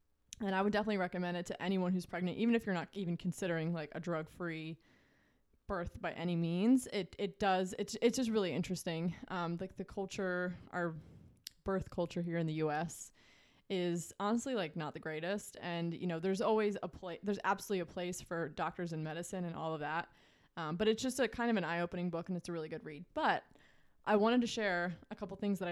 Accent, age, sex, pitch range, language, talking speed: American, 20-39, female, 170-200 Hz, English, 215 wpm